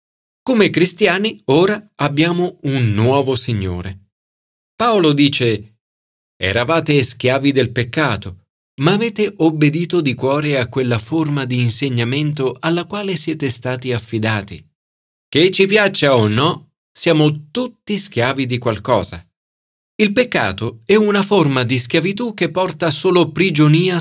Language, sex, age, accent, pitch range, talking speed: Italian, male, 40-59, native, 105-165 Hz, 120 wpm